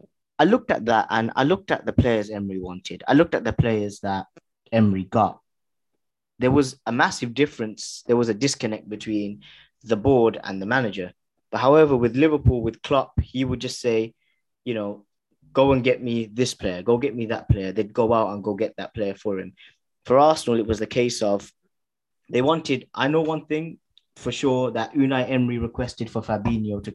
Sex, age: male, 20-39